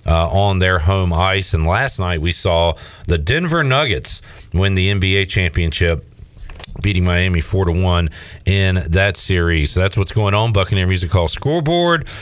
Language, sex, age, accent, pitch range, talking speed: English, male, 40-59, American, 90-105 Hz, 160 wpm